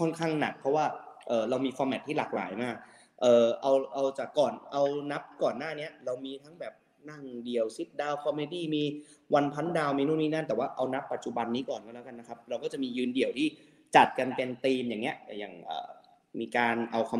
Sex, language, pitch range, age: male, Thai, 115-150 Hz, 20-39